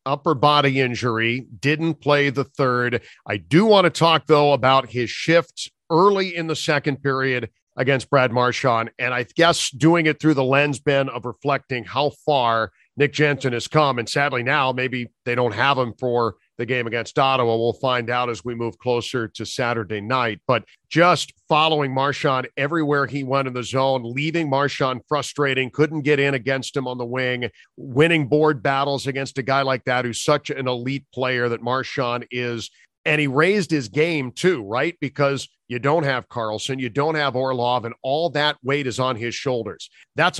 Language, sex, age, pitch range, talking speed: English, male, 40-59, 125-150 Hz, 185 wpm